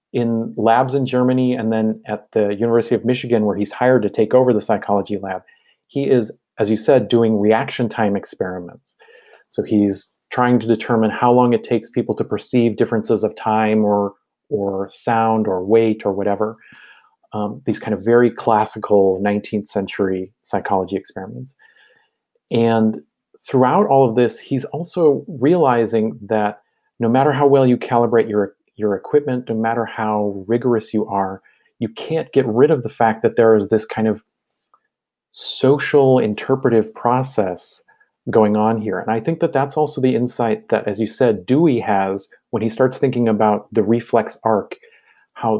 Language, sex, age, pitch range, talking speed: English, male, 30-49, 105-125 Hz, 165 wpm